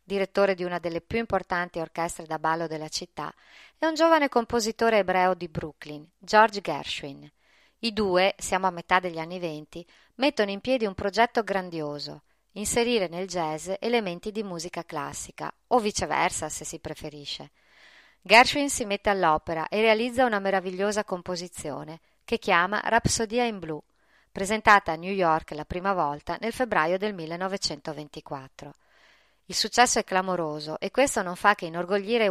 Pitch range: 165-210 Hz